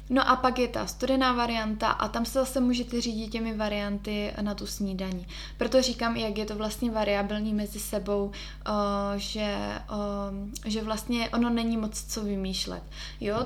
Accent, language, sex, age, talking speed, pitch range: native, Czech, female, 20-39, 160 wpm, 205-230 Hz